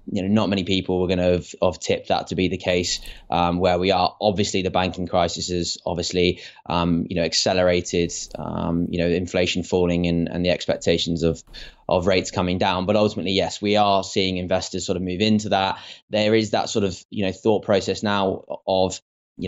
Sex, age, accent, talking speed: male, 20-39, British, 210 wpm